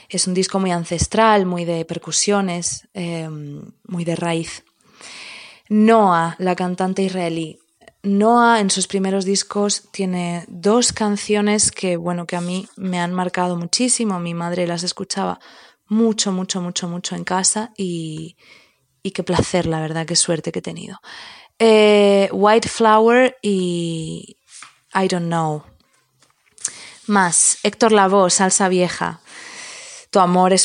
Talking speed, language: 135 wpm, Spanish